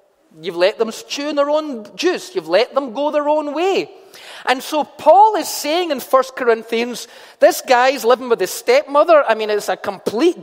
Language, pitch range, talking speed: English, 240-335 Hz, 195 wpm